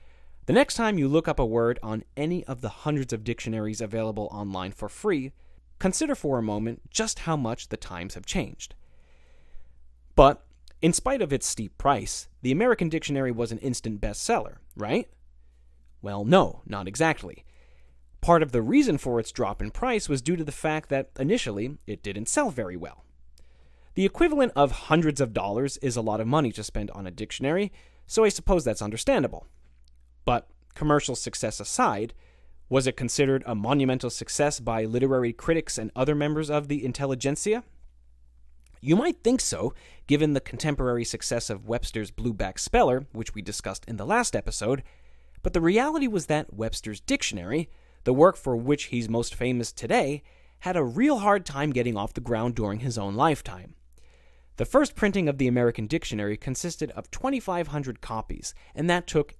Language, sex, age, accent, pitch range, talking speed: English, male, 30-49, American, 100-150 Hz, 175 wpm